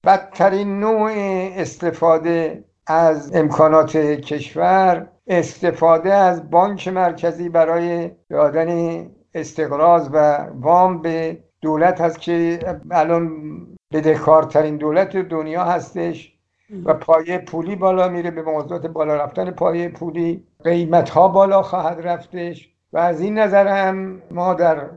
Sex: male